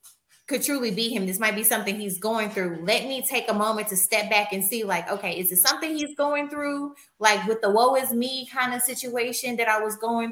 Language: English